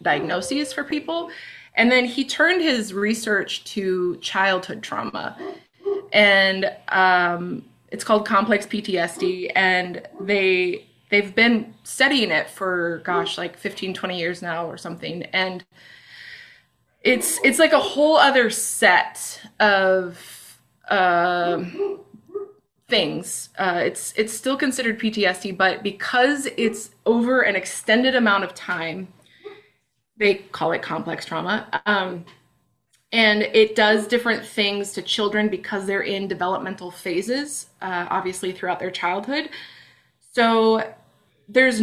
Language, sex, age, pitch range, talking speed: English, female, 20-39, 190-245 Hz, 120 wpm